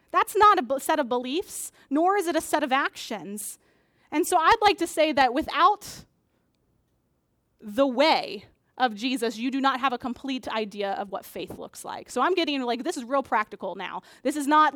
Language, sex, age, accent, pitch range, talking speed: English, female, 20-39, American, 245-330 Hz, 200 wpm